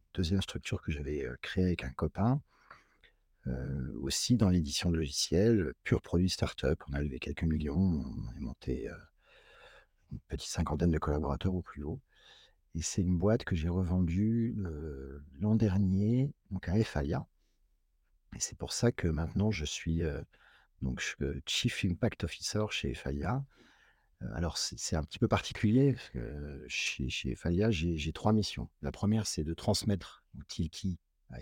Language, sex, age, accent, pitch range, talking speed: French, male, 50-69, French, 80-105 Hz, 165 wpm